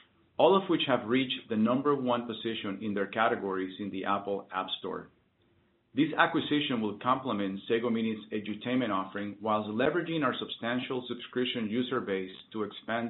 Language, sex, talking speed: English, male, 155 wpm